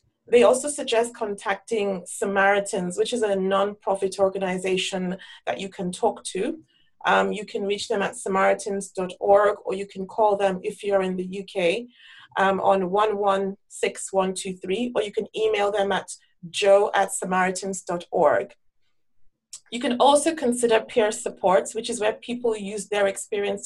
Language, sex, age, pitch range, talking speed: English, female, 30-49, 190-220 Hz, 145 wpm